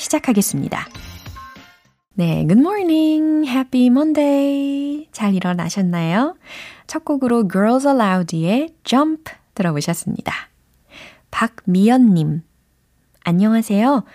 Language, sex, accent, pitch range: Korean, female, native, 170-240 Hz